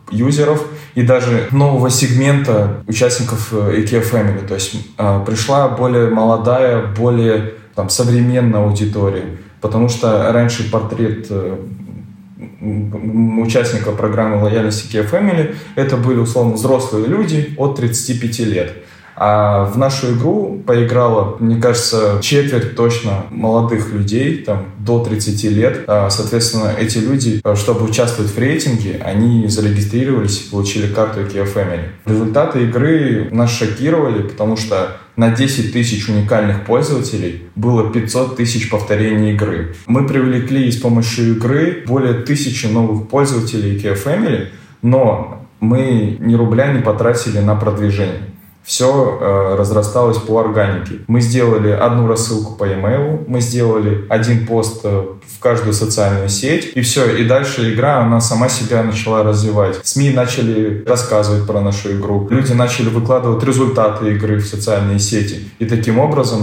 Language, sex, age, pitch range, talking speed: Russian, male, 20-39, 105-125 Hz, 135 wpm